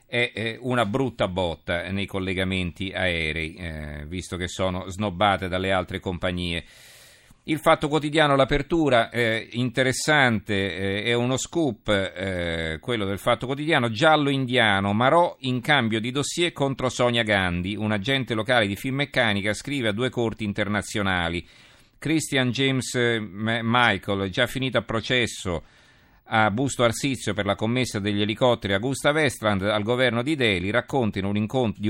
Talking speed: 145 wpm